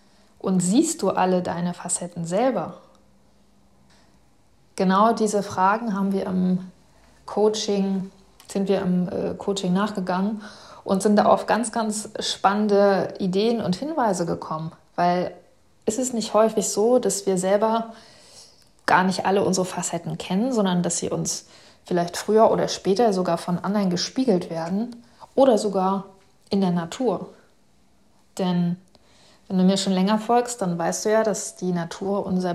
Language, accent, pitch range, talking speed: German, German, 180-215 Hz, 140 wpm